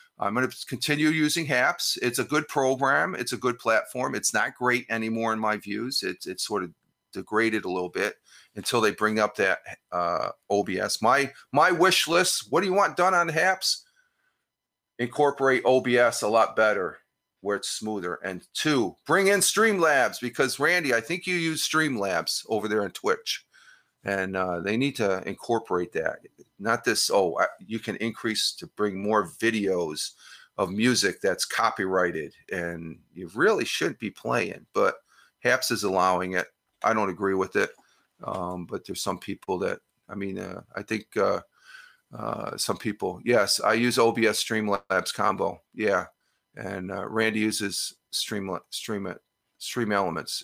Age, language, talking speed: 40-59, English, 165 wpm